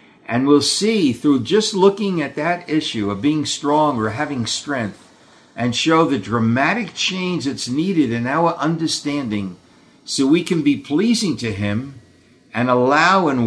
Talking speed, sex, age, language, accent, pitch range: 155 wpm, male, 50-69, English, American, 115-160 Hz